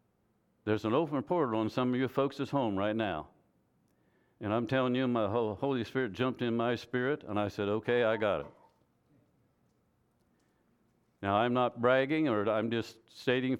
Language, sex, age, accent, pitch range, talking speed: English, male, 60-79, American, 105-130 Hz, 170 wpm